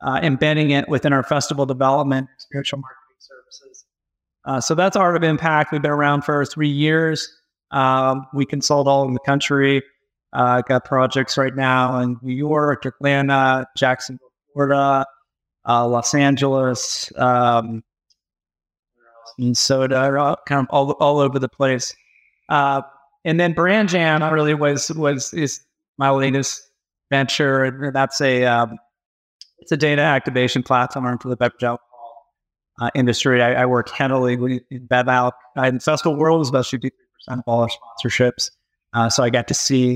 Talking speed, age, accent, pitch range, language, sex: 155 wpm, 30-49, American, 120-140 Hz, English, male